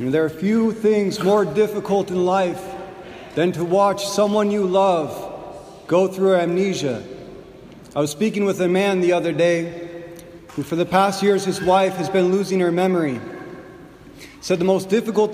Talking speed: 175 wpm